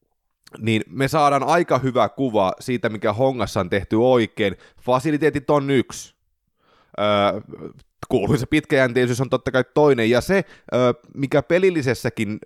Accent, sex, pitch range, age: native, male, 115-160 Hz, 20-39